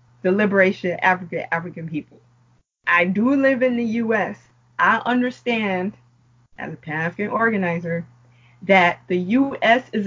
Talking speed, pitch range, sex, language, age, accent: 125 wpm, 175-245 Hz, female, English, 20-39, American